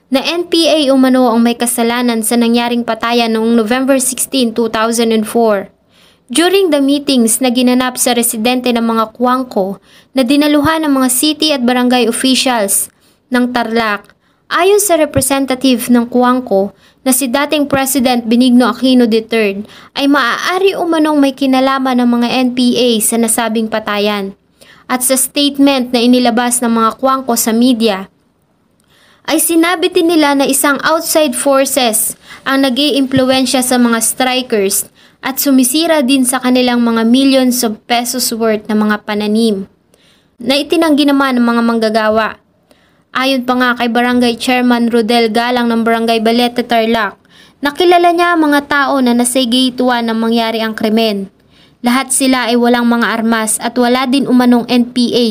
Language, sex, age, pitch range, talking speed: English, female, 20-39, 230-270 Hz, 140 wpm